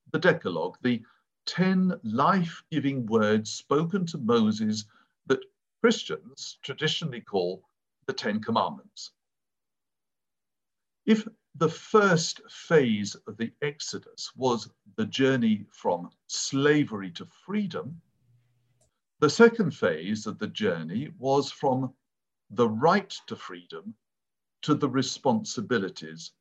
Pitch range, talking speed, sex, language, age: 110-180 Hz, 100 wpm, male, English, 50-69